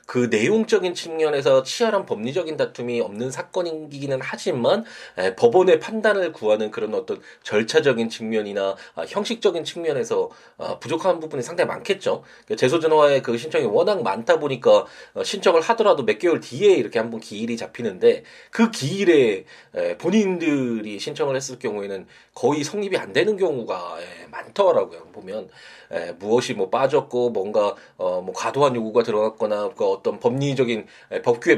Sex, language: male, Korean